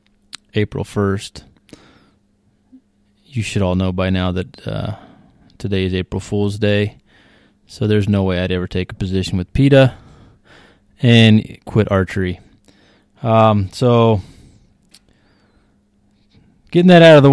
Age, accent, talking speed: 20-39, American, 125 wpm